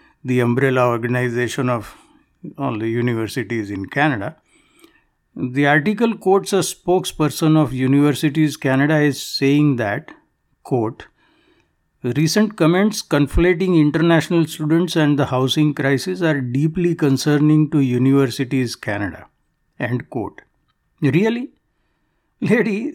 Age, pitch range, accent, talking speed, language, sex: 60-79, 135-175 Hz, Indian, 105 wpm, English, male